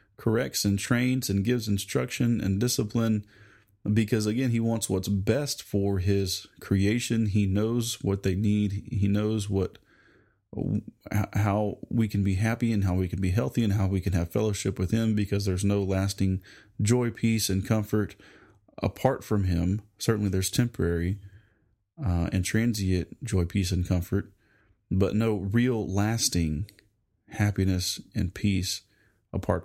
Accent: American